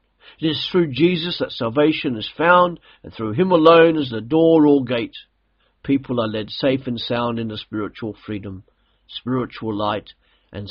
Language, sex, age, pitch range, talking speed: English, male, 50-69, 105-145 Hz, 170 wpm